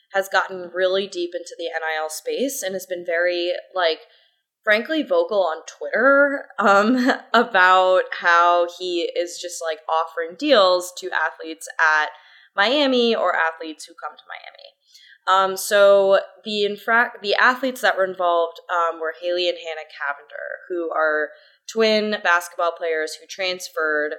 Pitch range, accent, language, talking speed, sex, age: 165-220 Hz, American, English, 145 wpm, female, 20-39